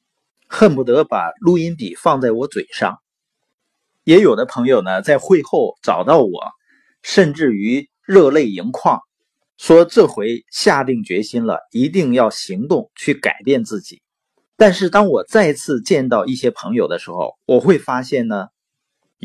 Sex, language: male, Chinese